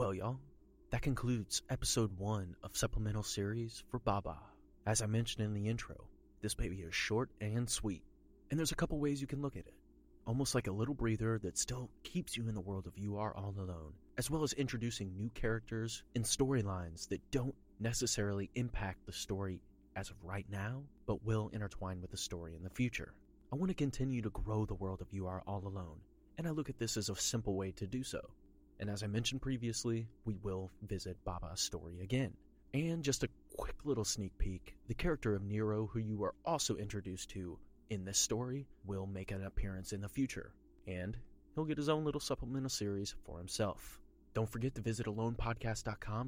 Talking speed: 200 wpm